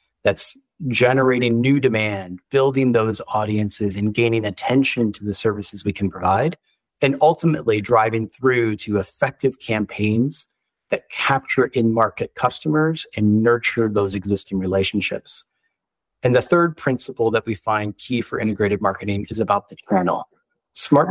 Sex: male